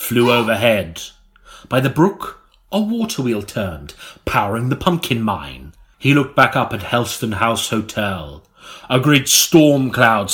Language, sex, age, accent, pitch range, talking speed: English, male, 30-49, British, 110-130 Hz, 145 wpm